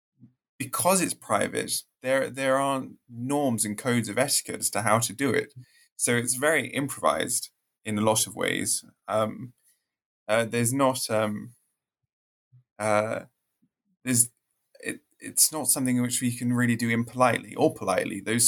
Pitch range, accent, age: 115-130 Hz, British, 20-39